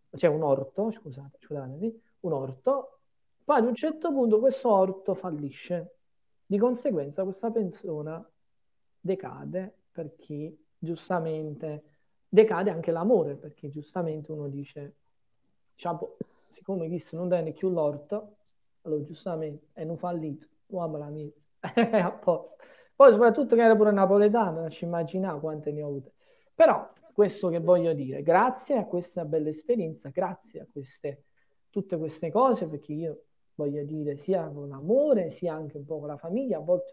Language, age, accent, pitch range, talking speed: Italian, 40-59, native, 155-210 Hz, 145 wpm